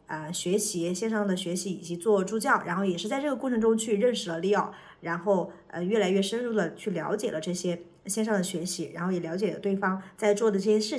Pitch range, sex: 180-215 Hz, female